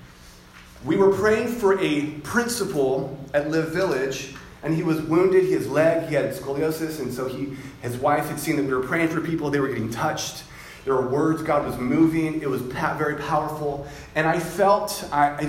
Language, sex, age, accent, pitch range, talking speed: English, male, 30-49, American, 145-180 Hz, 190 wpm